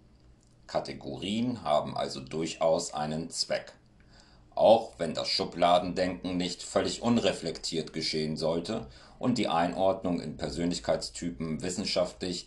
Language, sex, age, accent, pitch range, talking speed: German, male, 50-69, German, 75-90 Hz, 100 wpm